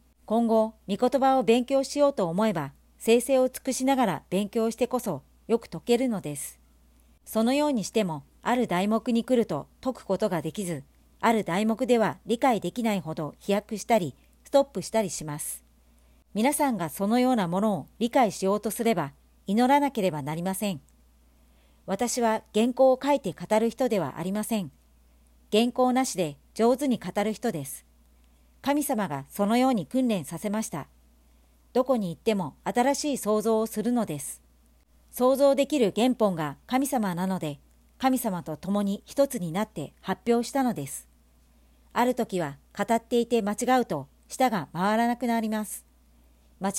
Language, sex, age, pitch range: Japanese, male, 50-69, 150-240 Hz